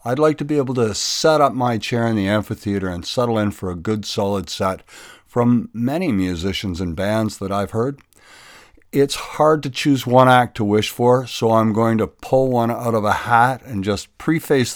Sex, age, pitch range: male, 60-79, 95-120 Hz